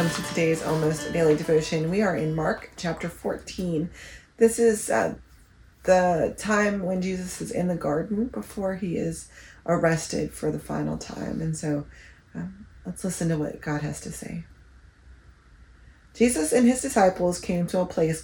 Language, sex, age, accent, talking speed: English, female, 30-49, American, 160 wpm